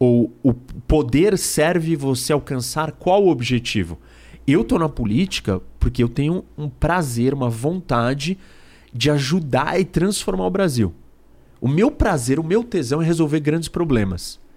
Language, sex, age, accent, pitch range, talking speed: Portuguese, male, 30-49, Brazilian, 125-185 Hz, 150 wpm